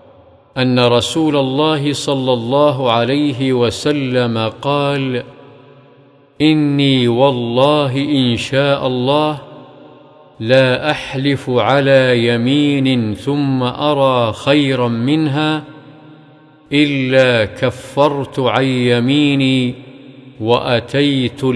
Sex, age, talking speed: male, 50-69, 70 wpm